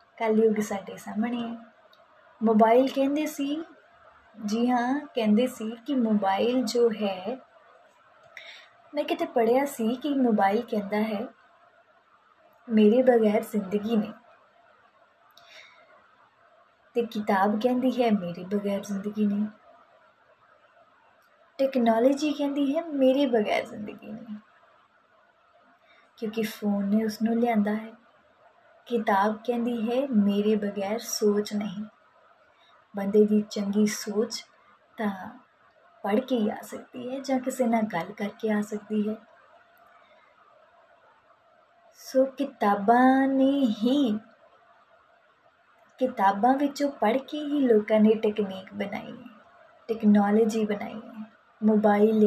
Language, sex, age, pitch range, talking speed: Punjabi, female, 20-39, 215-270 Hz, 105 wpm